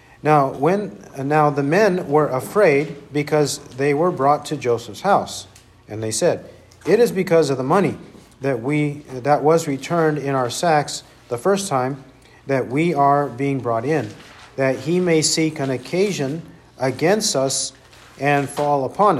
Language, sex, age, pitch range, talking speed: English, male, 50-69, 130-160 Hz, 160 wpm